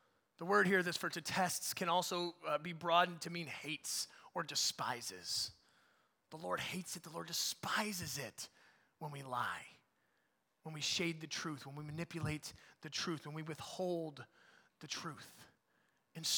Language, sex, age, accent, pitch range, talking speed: English, male, 30-49, American, 150-180 Hz, 160 wpm